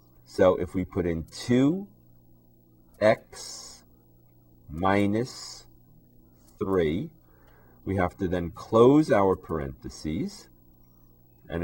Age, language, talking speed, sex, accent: 40-59, English, 80 wpm, male, American